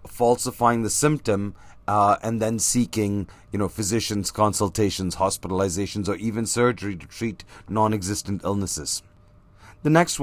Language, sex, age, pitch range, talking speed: English, male, 30-49, 100-140 Hz, 125 wpm